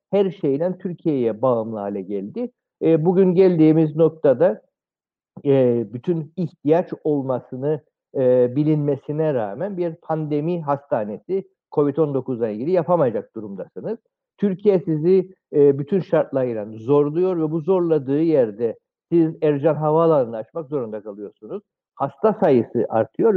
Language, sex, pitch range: Turkish, male, 135-180 Hz